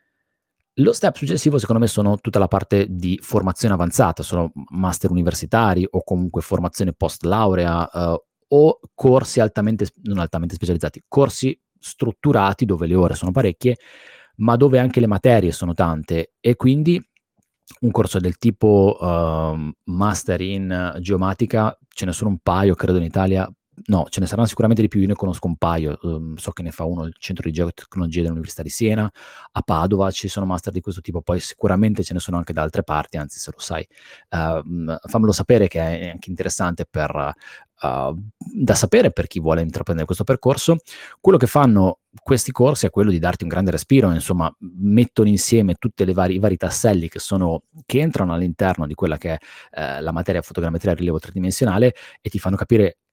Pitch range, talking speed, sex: 85-110 Hz, 180 wpm, male